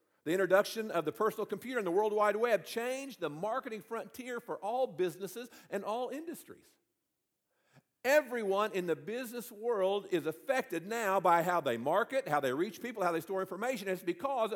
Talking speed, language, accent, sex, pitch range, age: 175 wpm, English, American, male, 180-255 Hz, 50-69